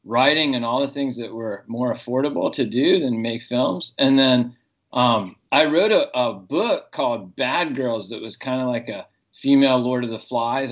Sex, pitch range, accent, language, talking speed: male, 120-145 Hz, American, English, 200 wpm